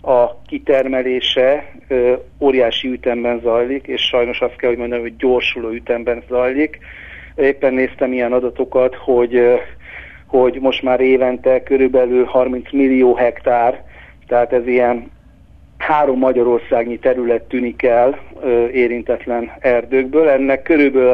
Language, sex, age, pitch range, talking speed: Hungarian, male, 50-69, 120-135 Hz, 110 wpm